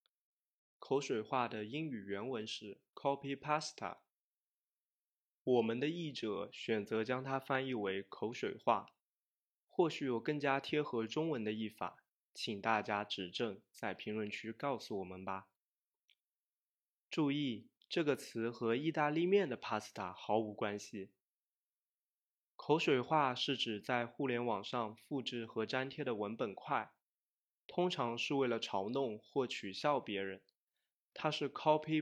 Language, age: Chinese, 20-39